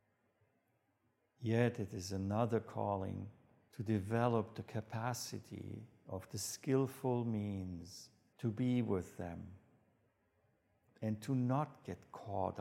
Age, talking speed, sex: 50-69, 105 wpm, male